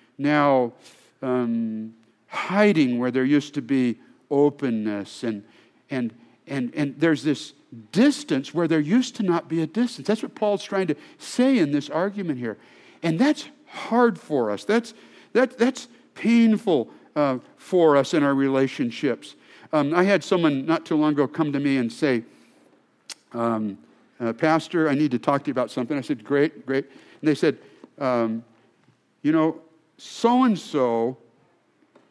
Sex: male